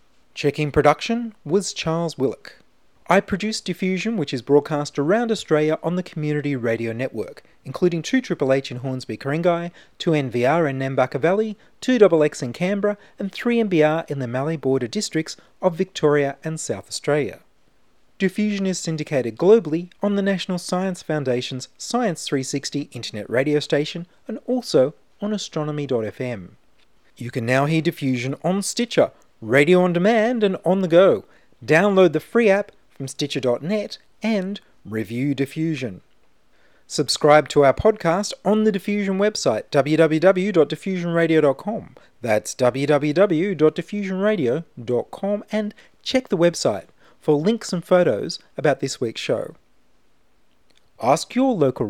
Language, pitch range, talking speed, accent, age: English, 140-200 Hz, 125 wpm, Australian, 30-49